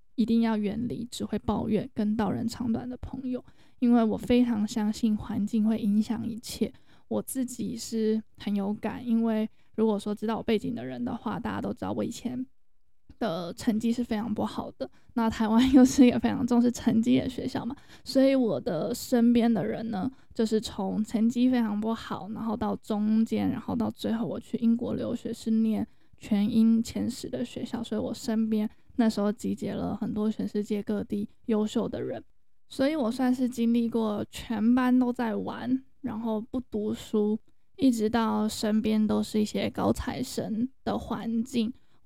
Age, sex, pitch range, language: 10-29, female, 215-245 Hz, Chinese